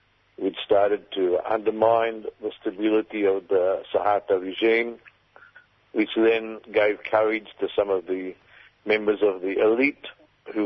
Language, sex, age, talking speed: English, male, 50-69, 130 wpm